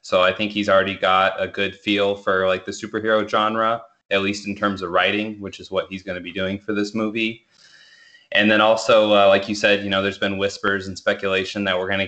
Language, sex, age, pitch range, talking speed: English, male, 20-39, 95-110 Hz, 245 wpm